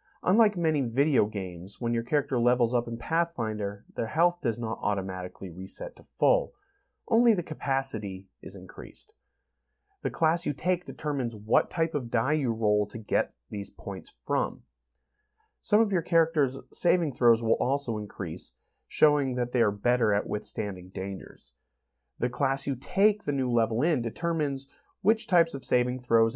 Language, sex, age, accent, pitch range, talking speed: English, male, 30-49, American, 105-145 Hz, 160 wpm